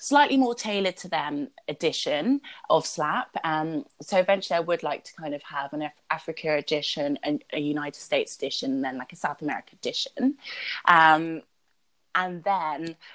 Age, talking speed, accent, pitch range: 20-39, 170 wpm, British, 150-235 Hz